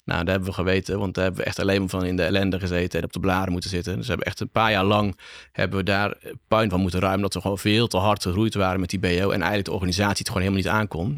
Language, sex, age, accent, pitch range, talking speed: Dutch, male, 30-49, Dutch, 95-110 Hz, 305 wpm